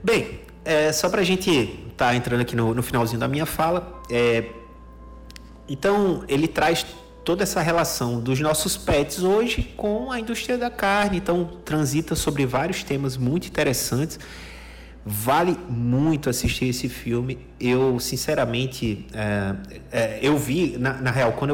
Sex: male